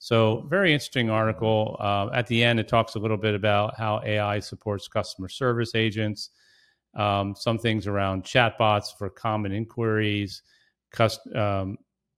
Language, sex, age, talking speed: English, male, 40-59, 150 wpm